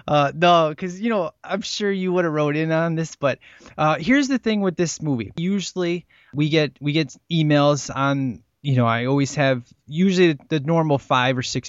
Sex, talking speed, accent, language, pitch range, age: male, 205 wpm, American, English, 125-160 Hz, 20-39